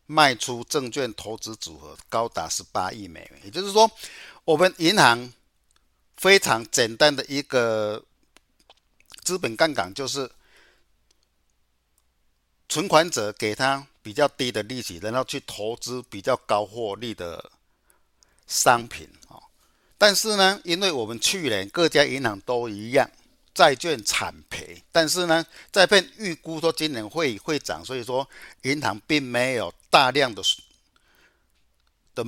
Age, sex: 50-69, male